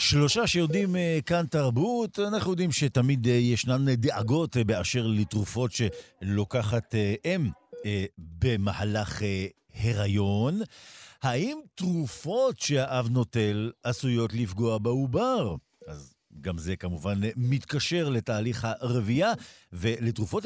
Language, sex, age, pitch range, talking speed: Hebrew, male, 50-69, 100-135 Hz, 90 wpm